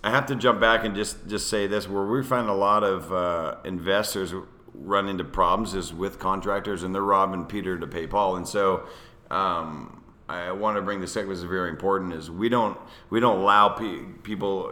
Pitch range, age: 85-100 Hz, 40-59